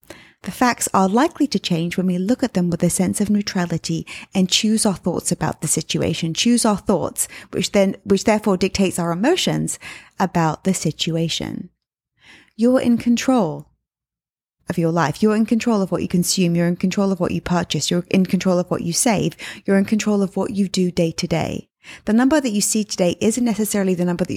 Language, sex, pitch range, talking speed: English, female, 175-230 Hz, 205 wpm